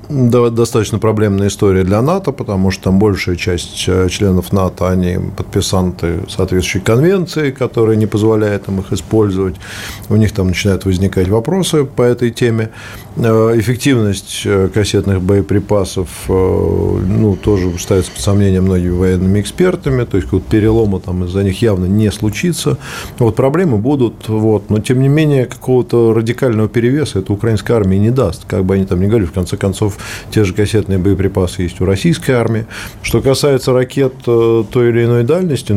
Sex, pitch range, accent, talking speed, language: male, 95-120 Hz, native, 150 wpm, Russian